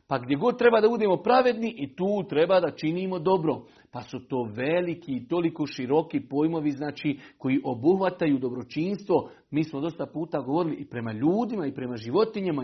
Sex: male